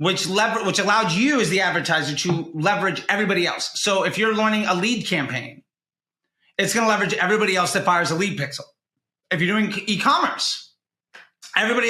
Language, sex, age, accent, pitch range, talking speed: English, male, 30-49, American, 175-220 Hz, 175 wpm